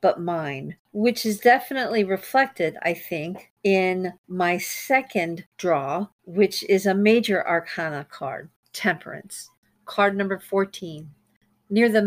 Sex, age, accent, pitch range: female, 50-69, American, 175-220 Hz